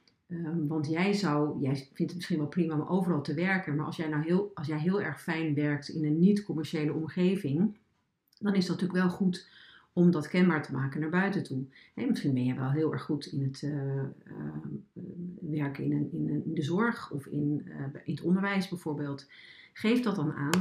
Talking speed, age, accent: 215 wpm, 40-59, Dutch